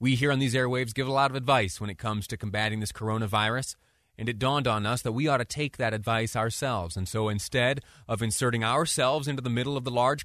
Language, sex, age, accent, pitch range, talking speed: English, male, 30-49, American, 110-140 Hz, 245 wpm